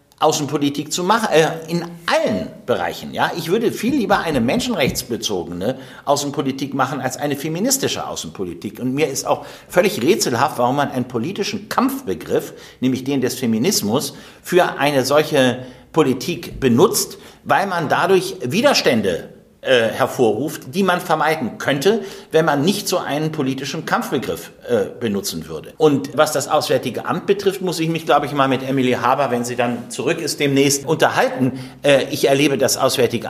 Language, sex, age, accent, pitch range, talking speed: German, male, 60-79, German, 135-195 Hz, 155 wpm